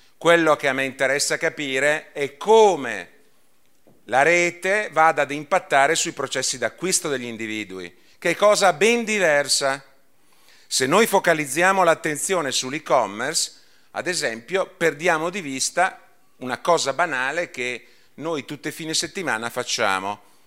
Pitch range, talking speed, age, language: 130-175 Hz, 125 wpm, 40-59, Italian